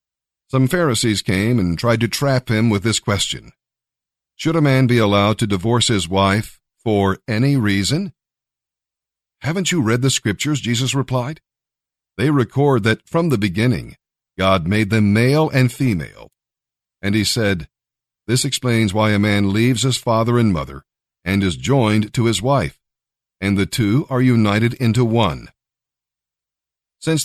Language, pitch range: English, 105-130 Hz